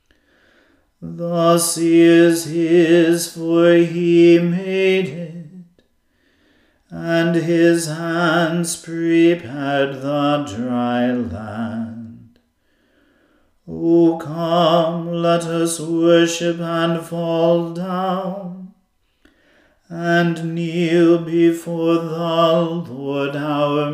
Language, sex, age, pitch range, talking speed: English, male, 40-59, 165-170 Hz, 75 wpm